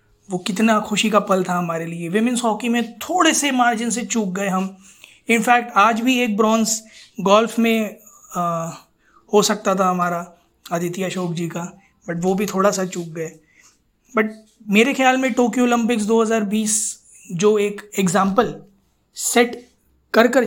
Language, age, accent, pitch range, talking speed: Hindi, 20-39, native, 185-220 Hz, 160 wpm